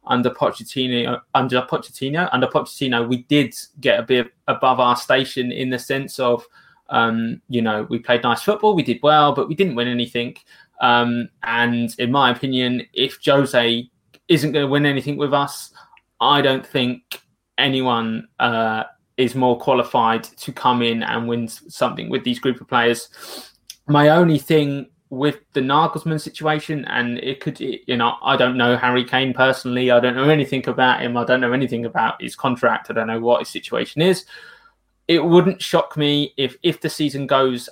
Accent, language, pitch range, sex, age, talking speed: British, English, 120-150 Hz, male, 20-39, 180 wpm